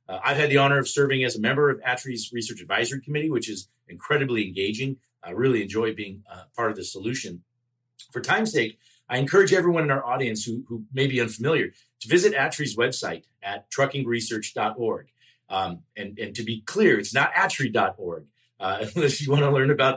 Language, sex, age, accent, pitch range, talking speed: English, male, 40-59, American, 110-140 Hz, 190 wpm